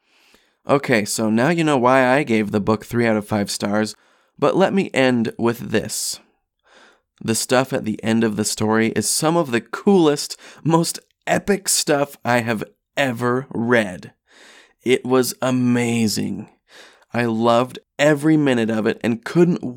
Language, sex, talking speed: English, male, 160 wpm